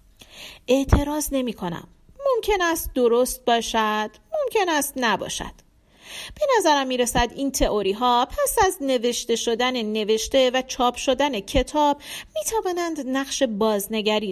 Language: Persian